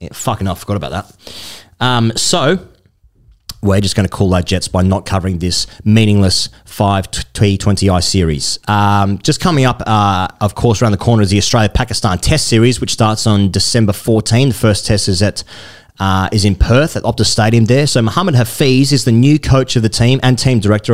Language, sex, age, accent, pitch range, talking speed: English, male, 30-49, Australian, 100-120 Hz, 200 wpm